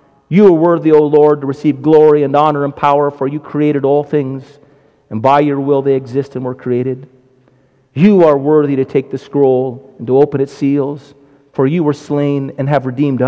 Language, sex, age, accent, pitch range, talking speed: English, male, 50-69, American, 130-155 Hz, 205 wpm